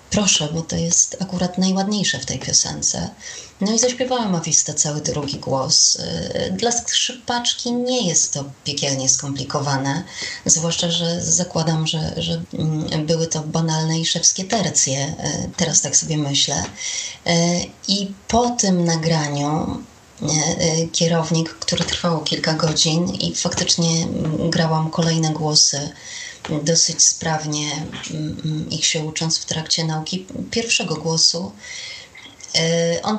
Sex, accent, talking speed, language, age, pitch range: female, native, 115 wpm, Polish, 20-39, 155-185 Hz